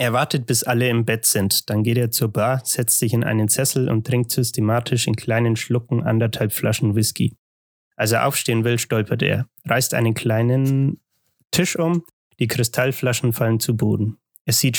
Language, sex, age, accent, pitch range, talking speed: German, male, 30-49, German, 110-130 Hz, 180 wpm